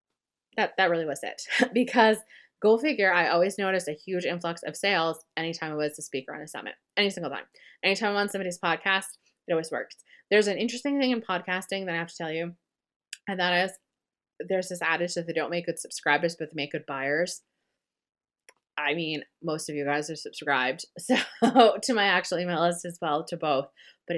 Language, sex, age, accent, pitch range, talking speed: English, female, 20-39, American, 160-195 Hz, 205 wpm